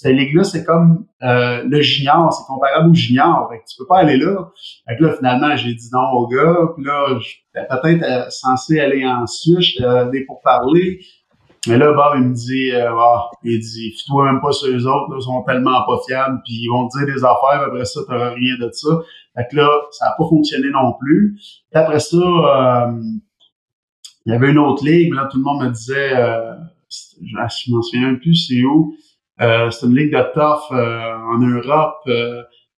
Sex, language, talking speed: male, French, 220 wpm